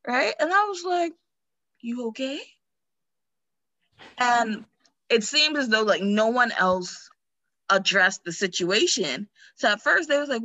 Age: 20-39